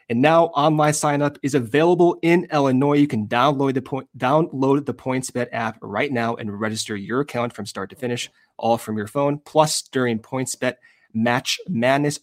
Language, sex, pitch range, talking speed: English, male, 120-150 Hz, 165 wpm